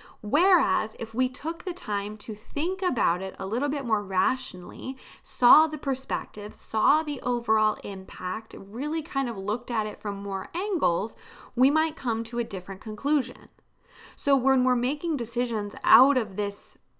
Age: 20-39